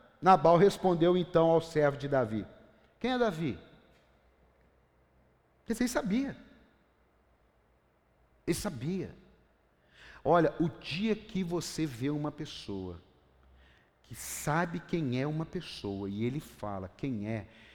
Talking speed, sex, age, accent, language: 115 wpm, male, 50-69, Brazilian, Portuguese